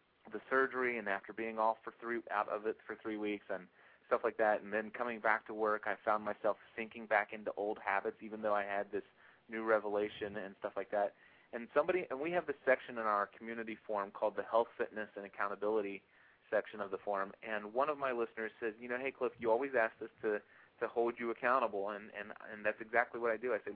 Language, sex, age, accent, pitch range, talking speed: English, male, 30-49, American, 105-125 Hz, 235 wpm